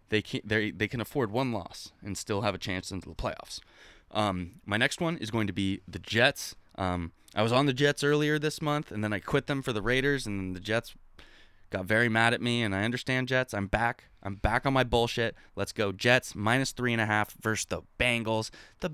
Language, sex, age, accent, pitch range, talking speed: English, male, 20-39, American, 95-125 Hz, 230 wpm